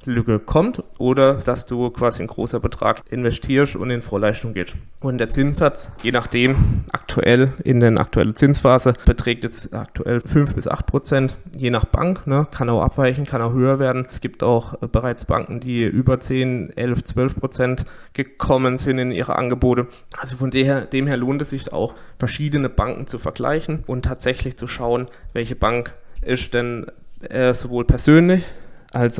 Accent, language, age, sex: German, German, 20-39, male